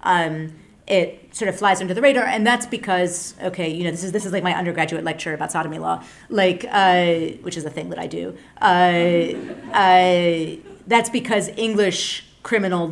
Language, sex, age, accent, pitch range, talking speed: English, female, 30-49, American, 160-195 Hz, 180 wpm